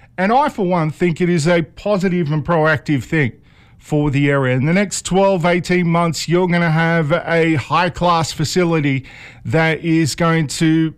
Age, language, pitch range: 50-69, English, 135-170 Hz